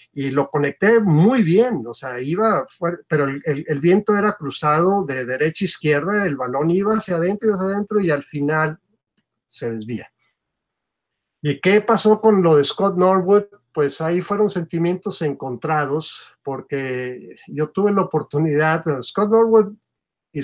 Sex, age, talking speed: male, 50-69, 160 wpm